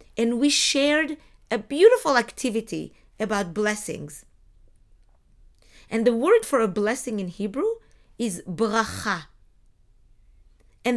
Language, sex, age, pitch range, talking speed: English, female, 40-59, 200-285 Hz, 105 wpm